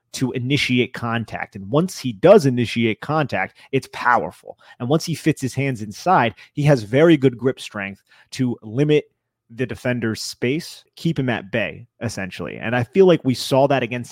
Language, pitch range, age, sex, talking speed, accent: English, 120-145 Hz, 30-49, male, 180 wpm, American